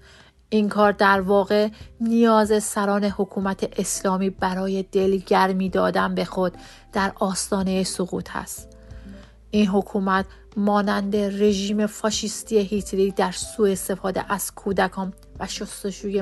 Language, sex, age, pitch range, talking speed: Persian, female, 30-49, 190-215 Hz, 110 wpm